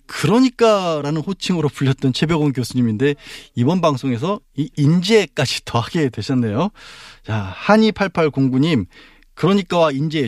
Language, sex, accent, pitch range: Korean, male, native, 125-180 Hz